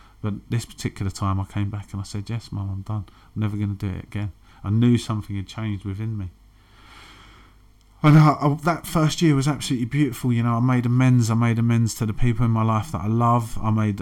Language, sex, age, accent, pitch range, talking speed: English, male, 30-49, British, 100-115 Hz, 230 wpm